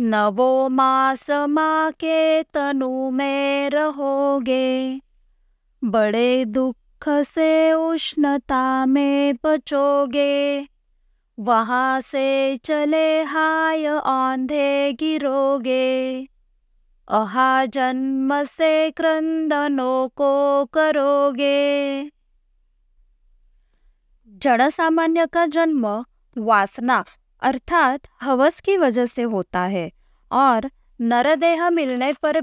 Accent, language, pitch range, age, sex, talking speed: native, Hindi, 245-310 Hz, 20-39, female, 75 wpm